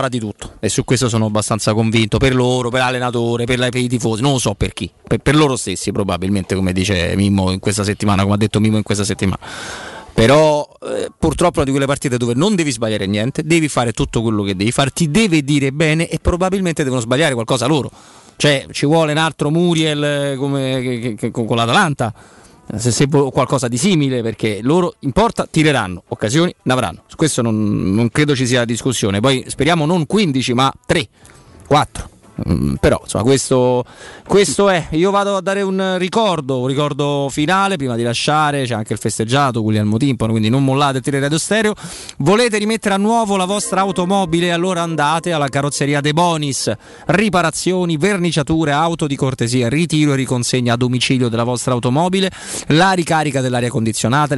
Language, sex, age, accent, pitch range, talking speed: Italian, male, 30-49, native, 120-165 Hz, 180 wpm